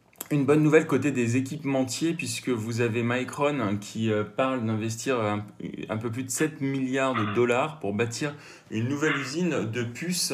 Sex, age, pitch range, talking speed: male, 30-49, 110-135 Hz, 175 wpm